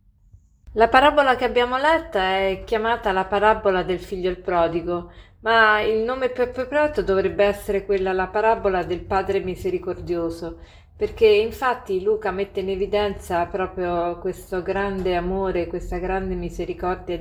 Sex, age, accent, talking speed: female, 30-49, native, 135 wpm